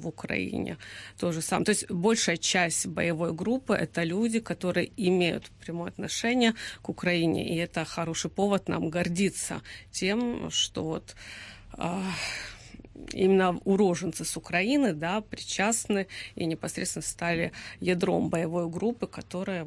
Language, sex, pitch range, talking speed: Ukrainian, female, 170-195 Hz, 130 wpm